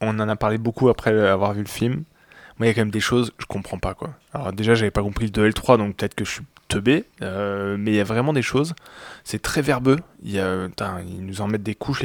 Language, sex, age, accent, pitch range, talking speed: French, male, 20-39, French, 100-120 Hz, 275 wpm